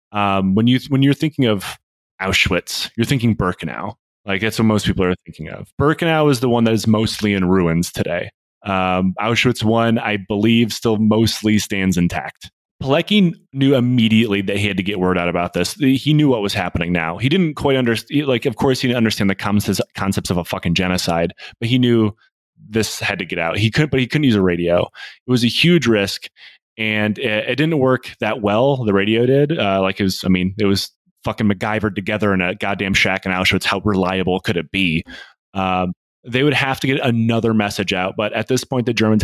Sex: male